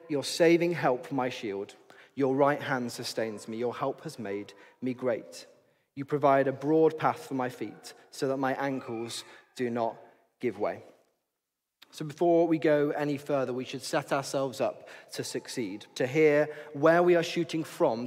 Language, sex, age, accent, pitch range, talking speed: English, male, 30-49, British, 140-160 Hz, 175 wpm